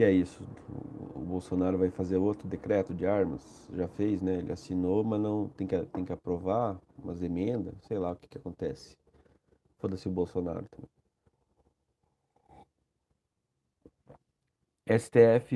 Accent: Brazilian